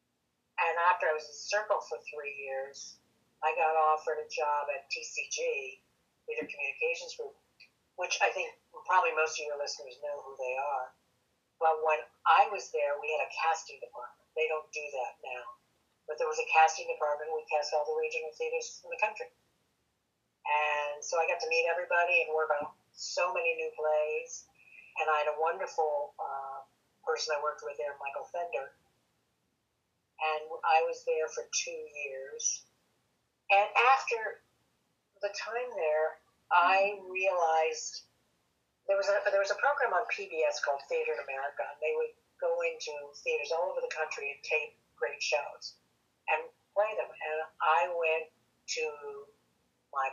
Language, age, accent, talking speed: English, 50-69, American, 165 wpm